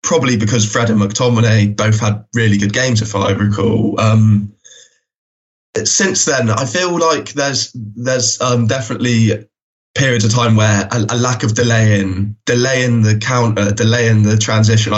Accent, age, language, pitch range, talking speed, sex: British, 10-29, English, 105-130 Hz, 155 wpm, male